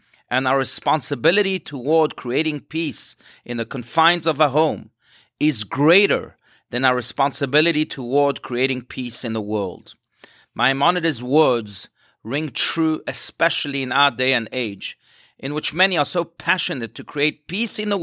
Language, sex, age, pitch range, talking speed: English, male, 30-49, 130-165 Hz, 145 wpm